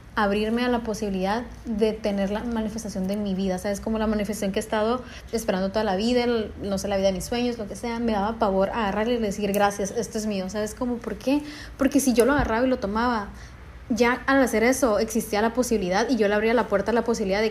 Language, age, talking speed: Spanish, 30-49, 245 wpm